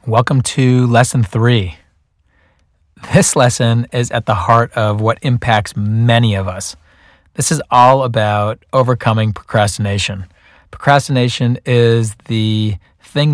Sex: male